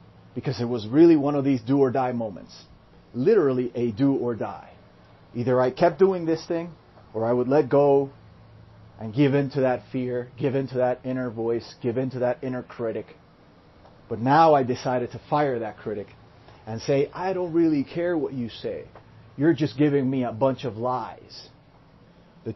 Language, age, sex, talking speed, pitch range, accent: English, 30-49, male, 190 wpm, 120-150 Hz, American